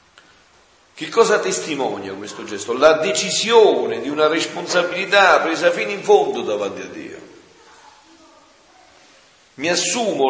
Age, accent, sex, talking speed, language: 50-69, native, male, 110 wpm, Italian